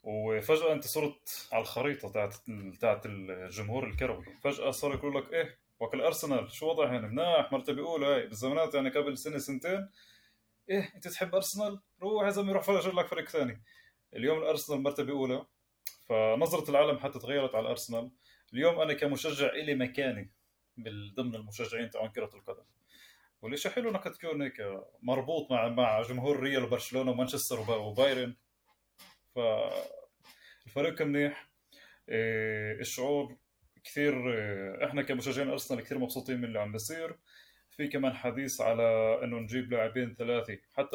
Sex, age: male, 20-39